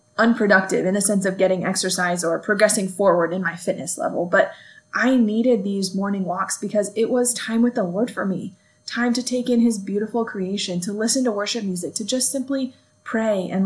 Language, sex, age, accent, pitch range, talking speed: English, female, 20-39, American, 190-230 Hz, 200 wpm